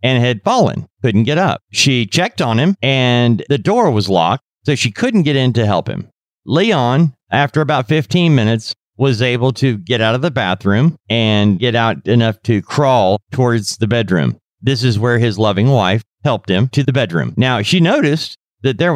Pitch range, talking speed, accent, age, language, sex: 100-135 Hz, 195 wpm, American, 40-59, English, male